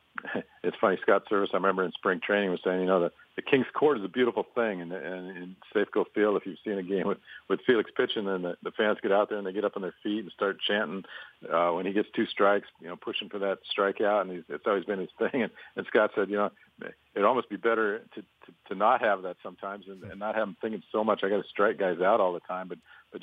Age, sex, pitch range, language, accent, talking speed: 50-69, male, 90-105 Hz, English, American, 280 wpm